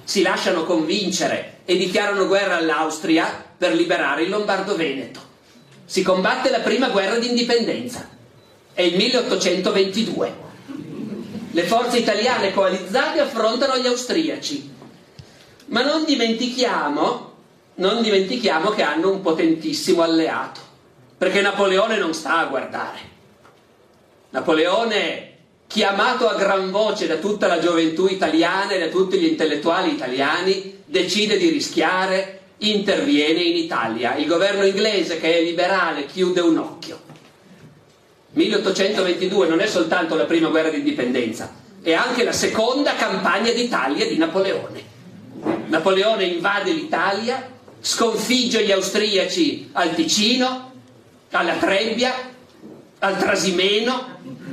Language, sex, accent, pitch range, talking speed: Italian, male, native, 185-245 Hz, 110 wpm